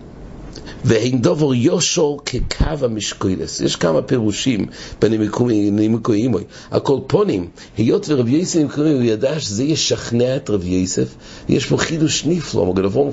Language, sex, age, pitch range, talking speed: English, male, 50-69, 100-145 Hz, 110 wpm